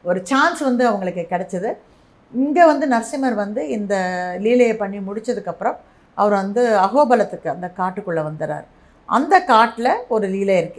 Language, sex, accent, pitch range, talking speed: Tamil, female, native, 175-230 Hz, 135 wpm